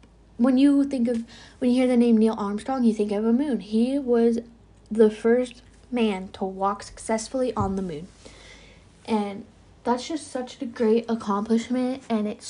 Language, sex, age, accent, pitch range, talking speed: English, female, 10-29, American, 200-235 Hz, 175 wpm